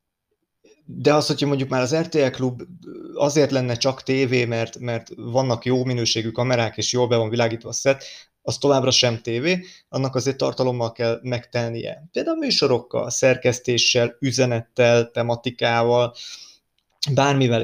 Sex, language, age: male, Hungarian, 30-49